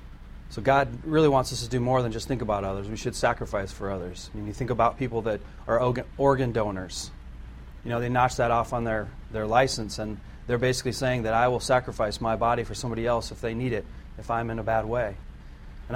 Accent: American